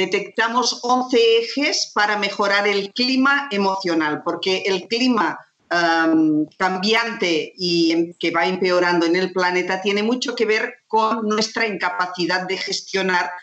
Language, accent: Spanish, Spanish